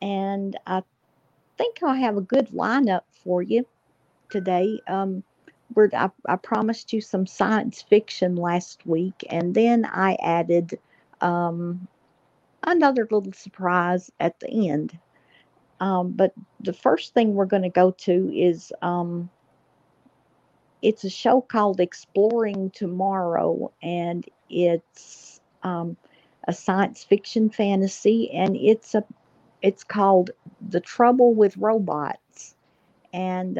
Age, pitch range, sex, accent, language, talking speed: 50-69, 180-225 Hz, female, American, English, 120 wpm